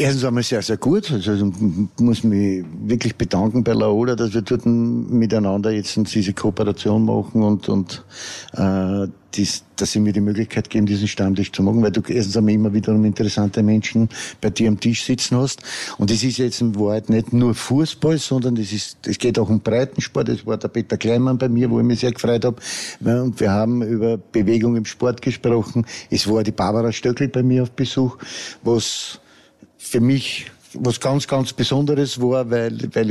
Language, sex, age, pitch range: German, male, 50-69, 110-125 Hz